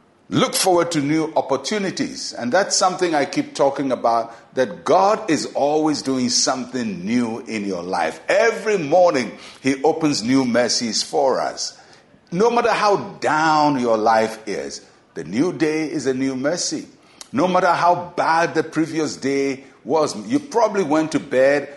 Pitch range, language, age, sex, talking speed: 125-170 Hz, English, 60-79, male, 155 wpm